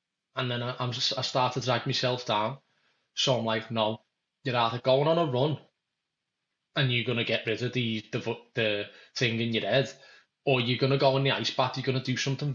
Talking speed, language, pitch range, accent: 230 wpm, English, 115-135 Hz, British